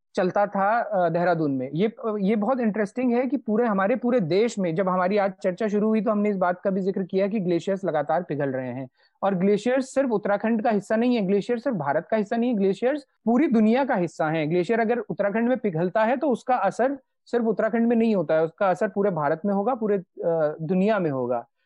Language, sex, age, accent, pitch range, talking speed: Hindi, male, 30-49, native, 190-235 Hz, 225 wpm